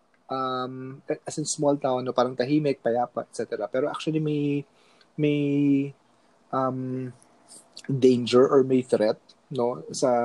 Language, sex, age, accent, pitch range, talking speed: Filipino, male, 20-39, native, 125-150 Hz, 125 wpm